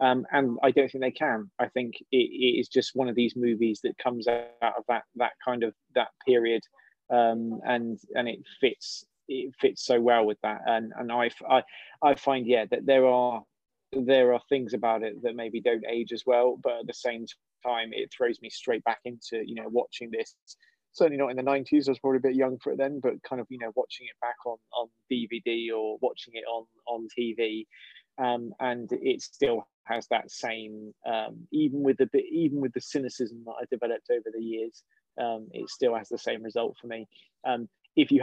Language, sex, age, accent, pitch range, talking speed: English, male, 20-39, British, 120-155 Hz, 220 wpm